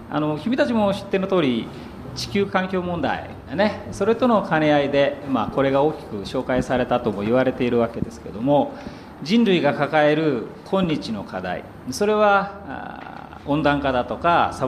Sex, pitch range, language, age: male, 115-195 Hz, Japanese, 40-59